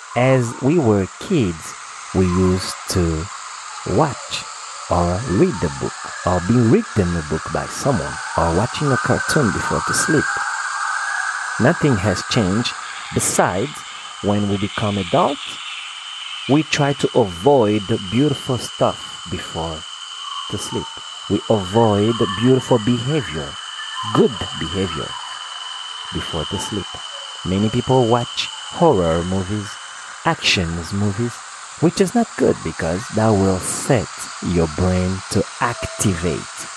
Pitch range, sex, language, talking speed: 90-130 Hz, male, French, 115 wpm